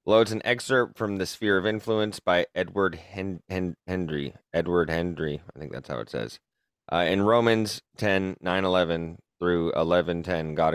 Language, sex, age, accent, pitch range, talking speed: English, male, 30-49, American, 85-100 Hz, 180 wpm